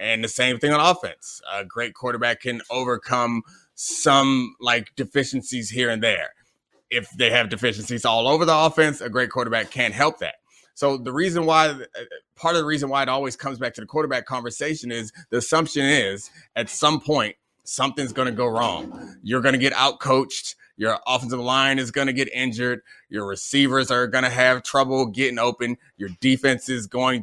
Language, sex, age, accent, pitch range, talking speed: English, male, 20-39, American, 125-150 Hz, 190 wpm